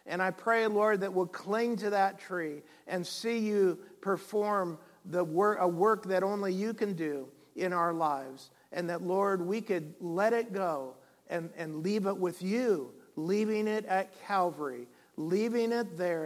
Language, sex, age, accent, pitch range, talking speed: English, male, 50-69, American, 160-200 Hz, 175 wpm